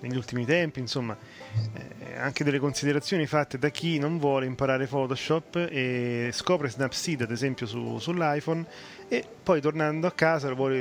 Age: 30-49